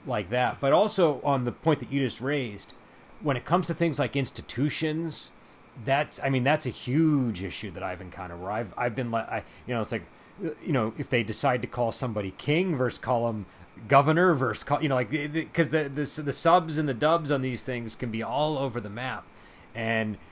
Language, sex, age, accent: English, male, 30-49, American